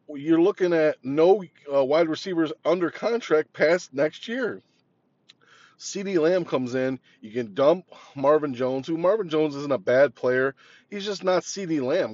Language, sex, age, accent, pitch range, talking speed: English, male, 20-39, American, 135-170 Hz, 165 wpm